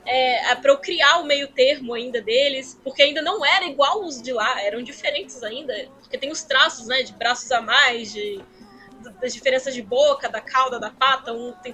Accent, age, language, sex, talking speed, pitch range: Brazilian, 10-29, Portuguese, female, 210 wpm, 245-315 Hz